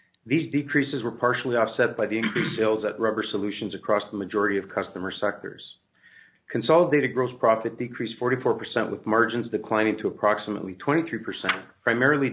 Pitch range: 105-130 Hz